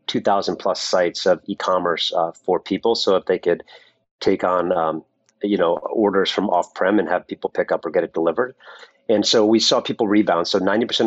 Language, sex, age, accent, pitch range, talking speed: English, male, 40-59, American, 95-115 Hz, 195 wpm